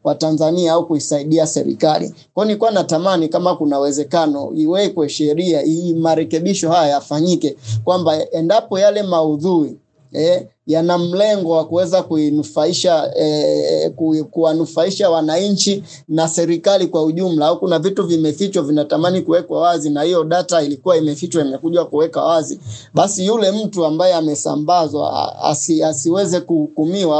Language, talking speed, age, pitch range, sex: Swahili, 125 wpm, 30-49, 155-175 Hz, male